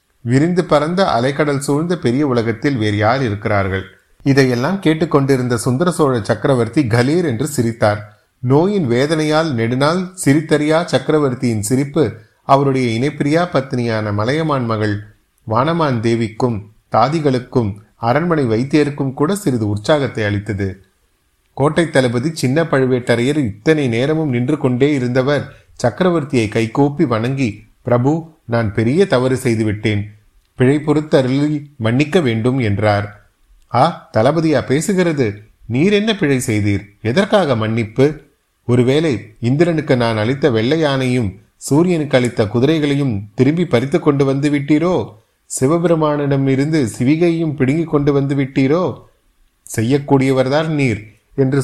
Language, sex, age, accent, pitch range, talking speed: Tamil, male, 30-49, native, 115-150 Hz, 105 wpm